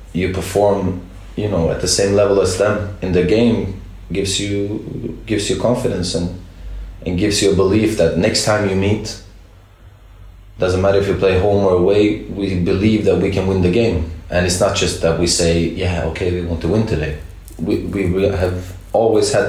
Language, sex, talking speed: English, male, 195 wpm